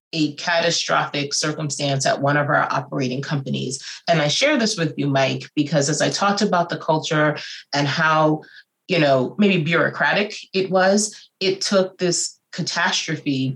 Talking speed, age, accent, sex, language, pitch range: 155 wpm, 30-49, American, female, English, 145-170 Hz